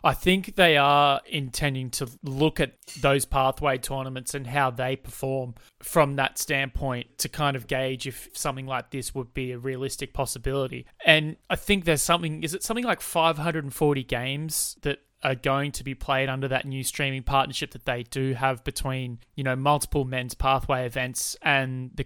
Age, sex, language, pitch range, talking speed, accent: 20-39, male, English, 130-145 Hz, 180 wpm, Australian